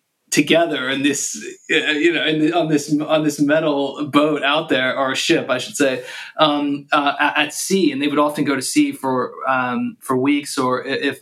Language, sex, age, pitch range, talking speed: English, male, 20-39, 130-150 Hz, 210 wpm